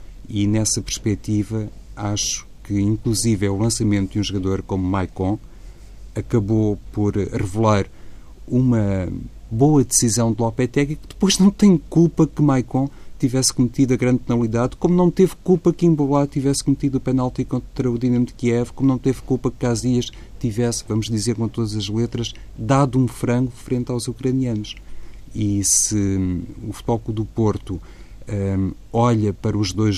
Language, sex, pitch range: Portuguese, male, 95-120 Hz